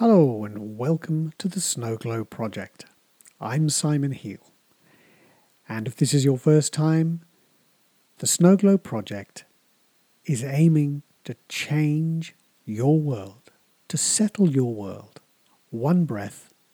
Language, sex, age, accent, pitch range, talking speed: English, male, 50-69, British, 115-165 Hz, 120 wpm